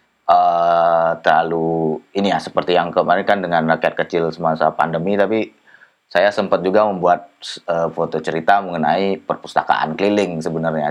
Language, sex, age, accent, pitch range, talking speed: Indonesian, male, 20-39, native, 80-100 Hz, 140 wpm